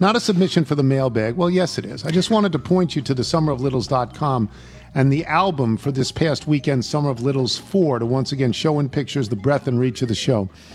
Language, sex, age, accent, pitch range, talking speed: English, male, 50-69, American, 115-150 Hz, 240 wpm